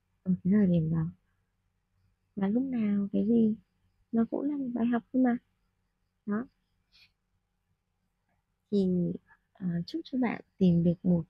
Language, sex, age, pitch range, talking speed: Vietnamese, female, 20-39, 165-215 Hz, 135 wpm